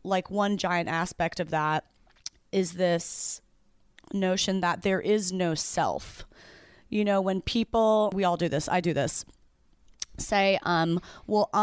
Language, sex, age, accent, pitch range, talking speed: English, female, 30-49, American, 175-220 Hz, 145 wpm